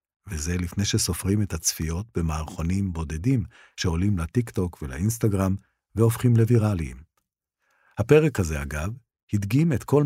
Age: 50-69